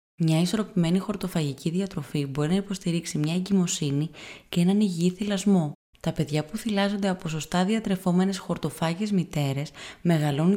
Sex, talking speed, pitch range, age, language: female, 130 wpm, 150-195 Hz, 20-39, Greek